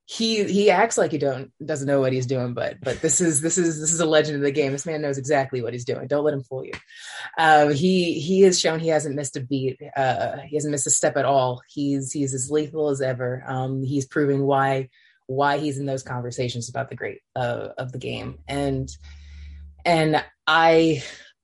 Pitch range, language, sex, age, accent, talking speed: 135-165 Hz, English, female, 20-39, American, 220 wpm